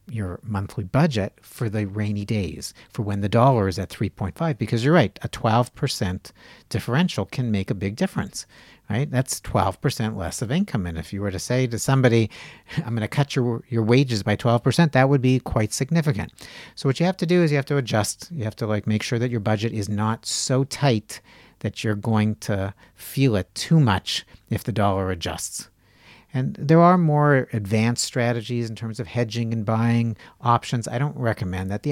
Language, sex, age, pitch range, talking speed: English, male, 60-79, 100-130 Hz, 200 wpm